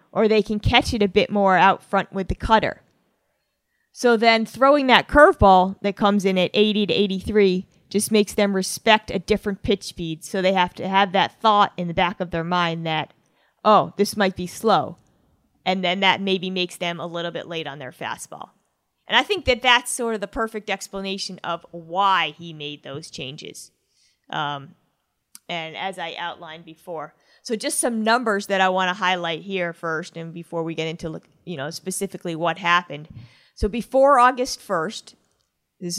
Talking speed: 190 wpm